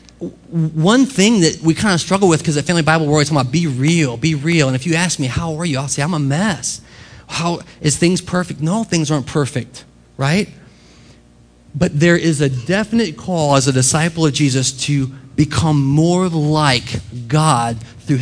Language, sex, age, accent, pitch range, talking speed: English, male, 30-49, American, 125-160 Hz, 195 wpm